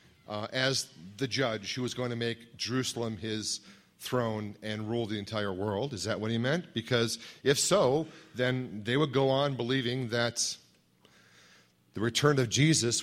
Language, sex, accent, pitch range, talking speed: English, male, American, 110-145 Hz, 165 wpm